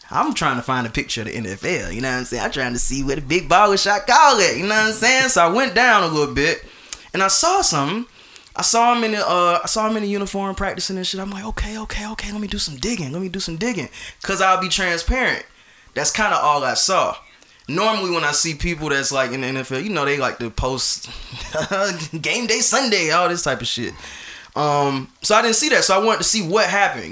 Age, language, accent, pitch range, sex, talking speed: 20-39, English, American, 135-200 Hz, male, 260 wpm